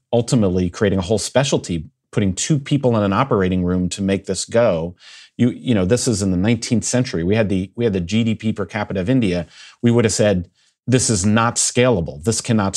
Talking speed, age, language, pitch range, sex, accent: 215 wpm, 40-59, English, 95-120 Hz, male, American